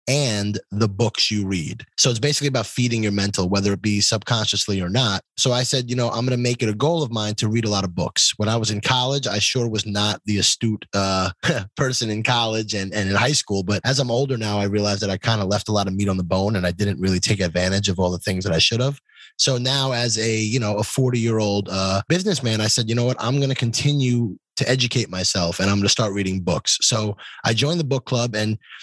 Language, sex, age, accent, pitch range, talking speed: English, male, 20-39, American, 100-125 Hz, 270 wpm